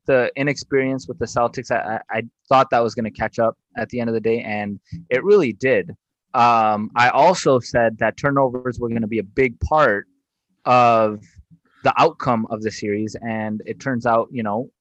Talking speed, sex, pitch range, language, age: 200 wpm, male, 115-140 Hz, English, 20-39